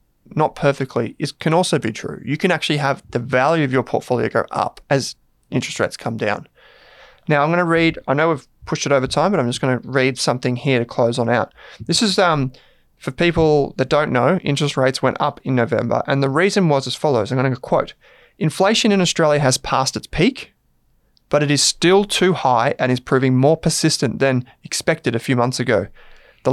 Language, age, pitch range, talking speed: English, 20-39, 130-160 Hz, 215 wpm